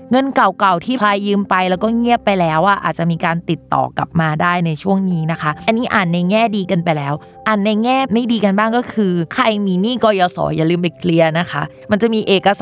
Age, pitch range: 20-39, 175-220 Hz